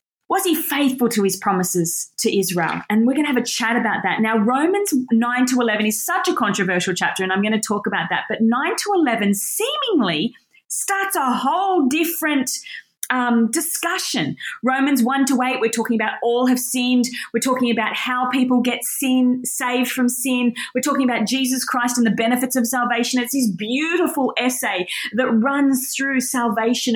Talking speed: 185 wpm